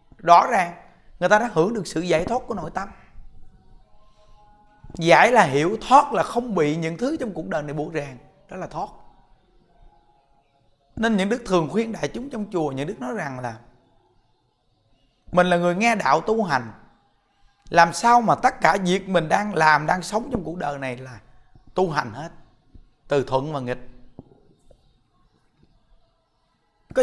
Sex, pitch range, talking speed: male, 145-220 Hz, 170 wpm